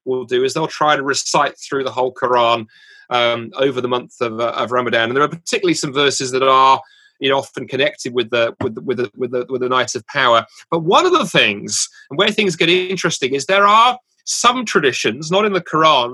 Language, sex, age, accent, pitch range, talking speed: English, male, 30-49, British, 130-180 Hz, 235 wpm